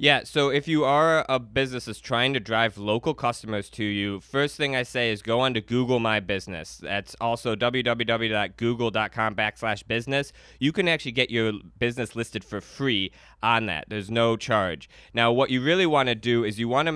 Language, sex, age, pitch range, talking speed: English, male, 20-39, 110-135 Hz, 200 wpm